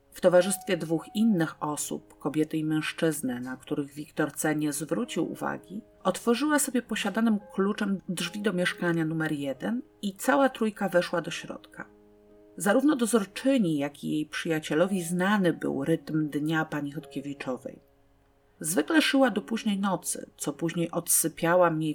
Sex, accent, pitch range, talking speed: female, native, 150-200 Hz, 135 wpm